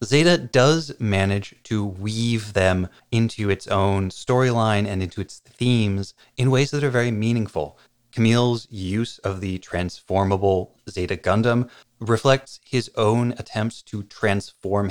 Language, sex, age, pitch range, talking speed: English, male, 30-49, 95-120 Hz, 135 wpm